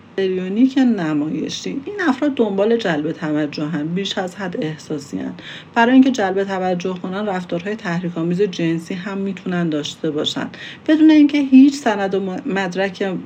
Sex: female